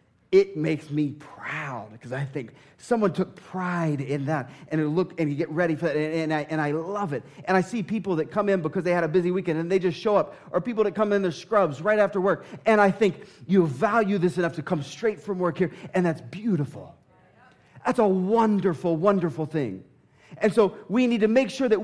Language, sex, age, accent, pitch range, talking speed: English, male, 30-49, American, 150-200 Hz, 235 wpm